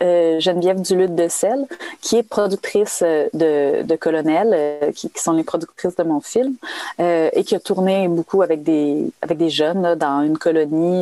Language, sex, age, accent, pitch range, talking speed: French, female, 30-49, Canadian, 165-205 Hz, 190 wpm